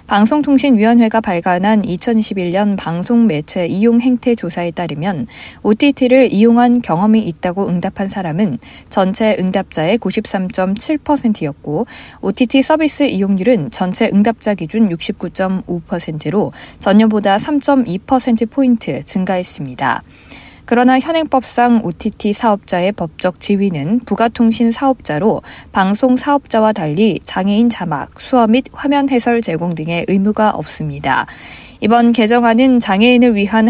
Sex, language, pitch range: female, Korean, 180-245 Hz